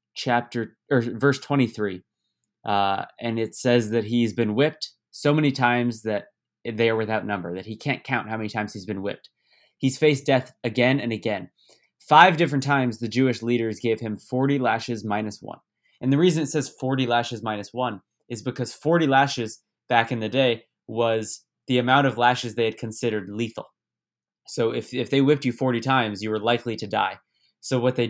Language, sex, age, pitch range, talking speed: English, male, 20-39, 110-130 Hz, 190 wpm